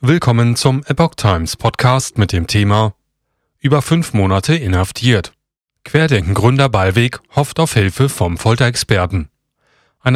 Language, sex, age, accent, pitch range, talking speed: German, male, 30-49, German, 105-140 Hz, 120 wpm